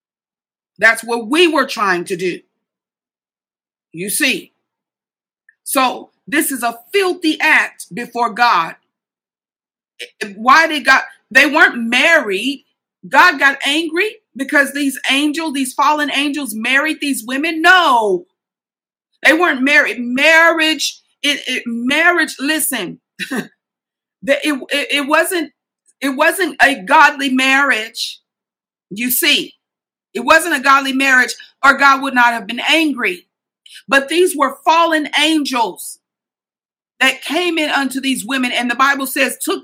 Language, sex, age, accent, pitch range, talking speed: English, female, 50-69, American, 250-315 Hz, 125 wpm